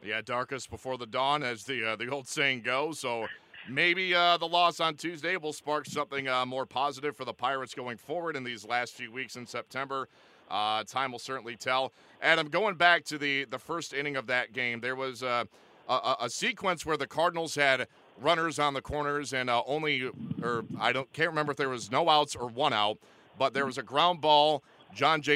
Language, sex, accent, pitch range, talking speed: English, male, American, 125-150 Hz, 215 wpm